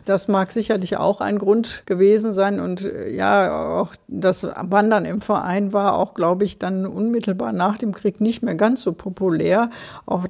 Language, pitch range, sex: German, 175-205 Hz, female